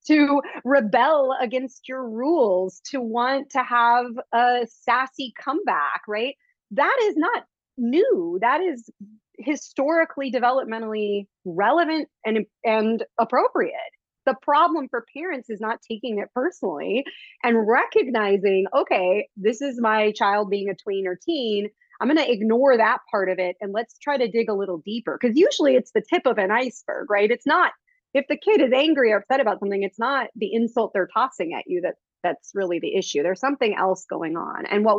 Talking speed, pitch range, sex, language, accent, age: 175 wpm, 215-285 Hz, female, English, American, 30-49